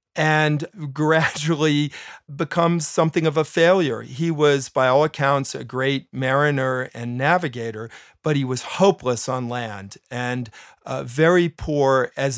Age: 40-59